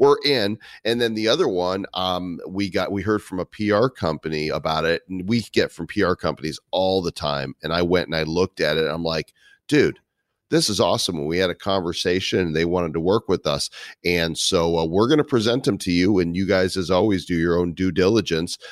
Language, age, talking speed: English, 40-59, 235 wpm